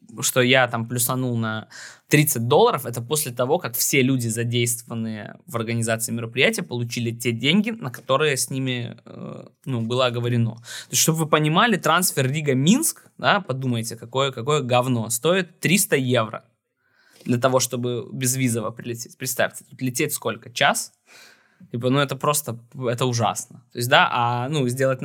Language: Russian